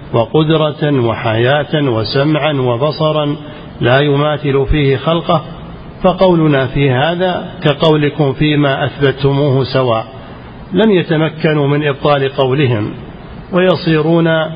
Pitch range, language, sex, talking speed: 140-155 Hz, Arabic, male, 85 wpm